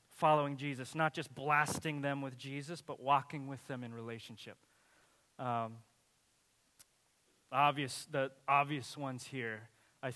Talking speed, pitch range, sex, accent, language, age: 125 wpm, 120-145 Hz, male, American, English, 20-39